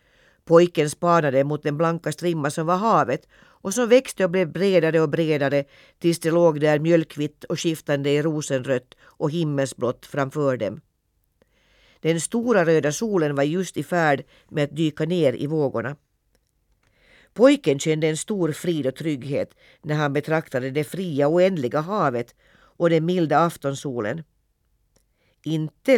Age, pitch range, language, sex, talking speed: 50-69, 145-170 Hz, Swedish, female, 150 wpm